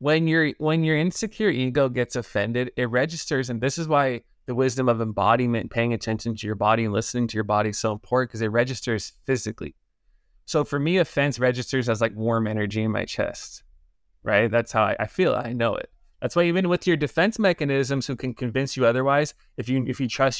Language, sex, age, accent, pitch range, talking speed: English, male, 20-39, American, 120-160 Hz, 210 wpm